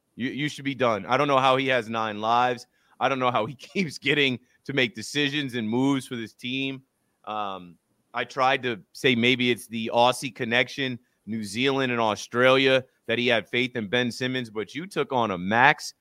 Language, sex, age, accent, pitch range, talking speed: English, male, 30-49, American, 115-135 Hz, 205 wpm